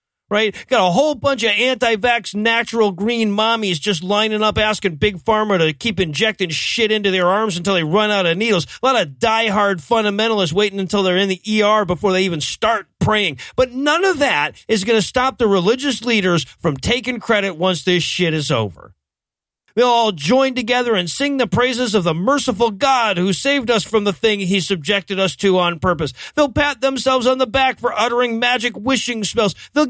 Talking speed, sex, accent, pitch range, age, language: 200 wpm, male, American, 195-250 Hz, 40-59, English